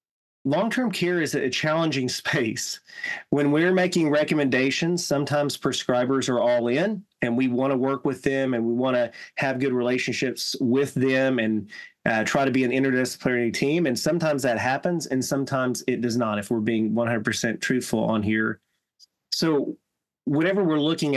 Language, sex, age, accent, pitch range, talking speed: English, male, 30-49, American, 120-145 Hz, 165 wpm